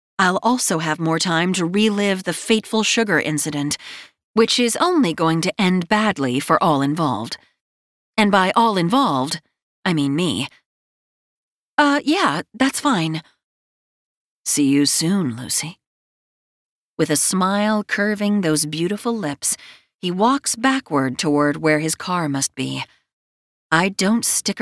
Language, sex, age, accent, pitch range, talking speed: English, female, 30-49, American, 150-210 Hz, 135 wpm